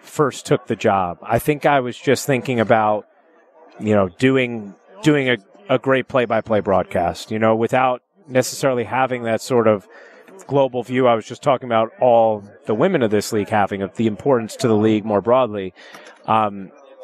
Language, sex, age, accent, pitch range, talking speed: English, male, 30-49, American, 110-140 Hz, 185 wpm